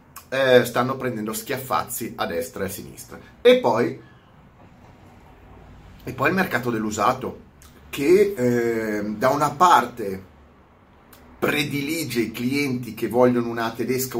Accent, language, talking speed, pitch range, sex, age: native, Italian, 115 wpm, 110-140 Hz, male, 30-49